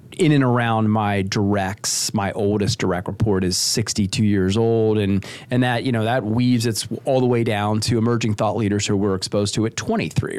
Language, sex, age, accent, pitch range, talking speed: English, male, 30-49, American, 105-130 Hz, 200 wpm